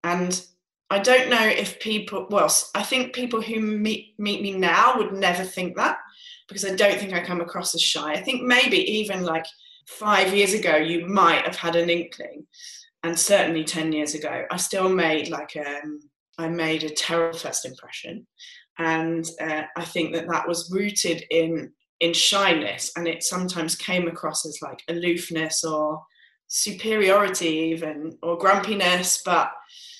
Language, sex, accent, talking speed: English, female, British, 165 wpm